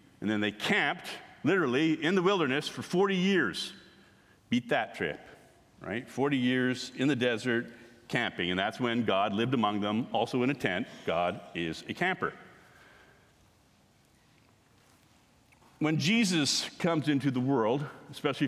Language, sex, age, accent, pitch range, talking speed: English, male, 50-69, American, 130-180 Hz, 140 wpm